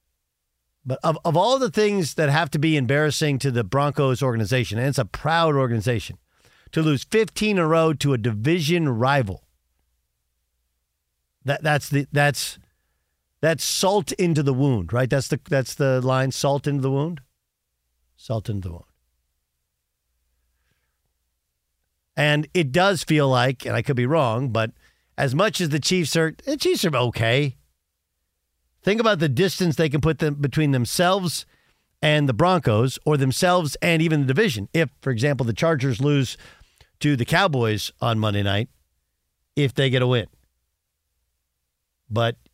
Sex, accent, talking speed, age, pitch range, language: male, American, 155 wpm, 50-69, 100-165 Hz, English